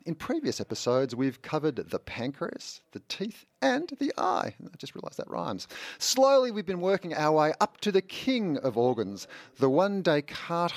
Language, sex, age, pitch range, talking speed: English, male, 40-59, 110-170 Hz, 180 wpm